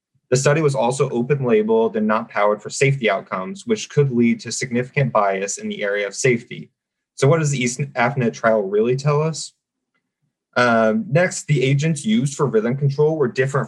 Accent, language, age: American, English, 20-39